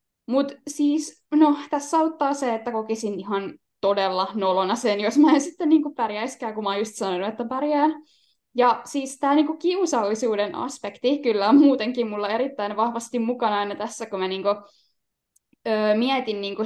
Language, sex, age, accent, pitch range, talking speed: Finnish, female, 10-29, native, 220-305 Hz, 160 wpm